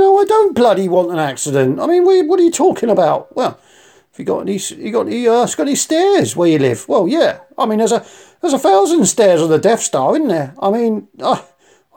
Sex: male